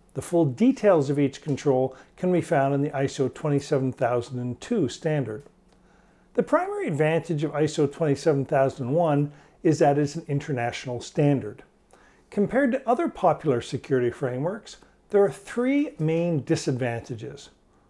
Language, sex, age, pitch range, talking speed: English, male, 50-69, 135-205 Hz, 125 wpm